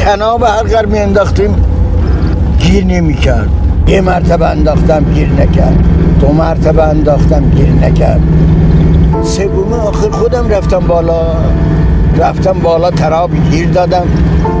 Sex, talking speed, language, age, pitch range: male, 105 wpm, Persian, 60-79, 80-100 Hz